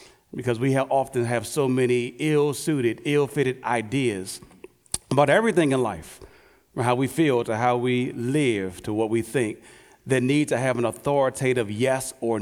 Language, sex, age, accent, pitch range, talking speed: English, male, 40-59, American, 125-175 Hz, 160 wpm